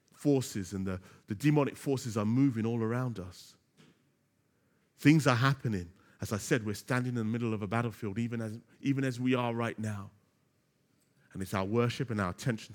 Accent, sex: British, male